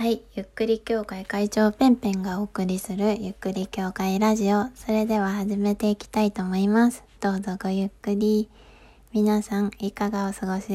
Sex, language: female, Japanese